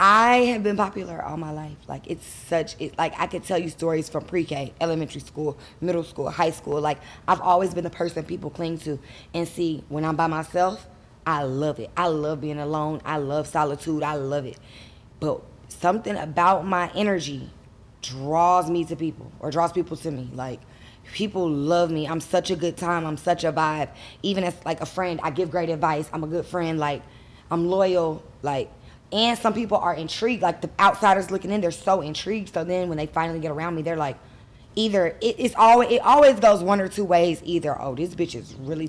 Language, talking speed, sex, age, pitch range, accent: English, 210 wpm, female, 10-29, 150-185 Hz, American